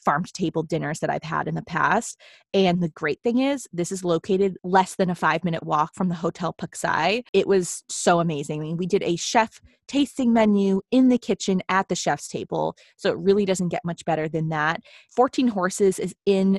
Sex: female